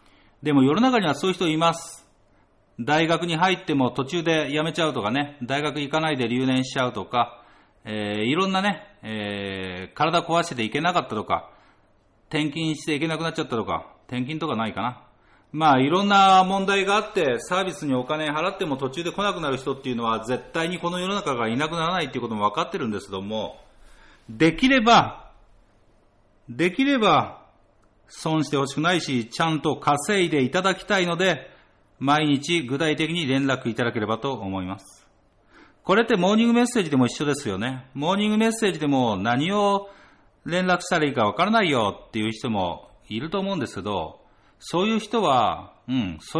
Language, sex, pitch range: Japanese, male, 125-185 Hz